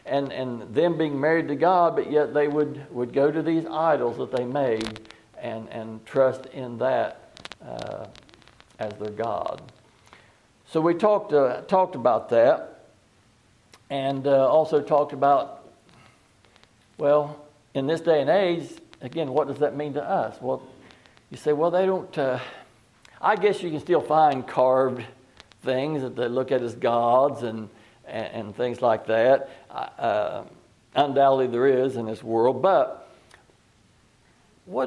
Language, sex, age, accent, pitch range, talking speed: English, male, 60-79, American, 120-155 Hz, 150 wpm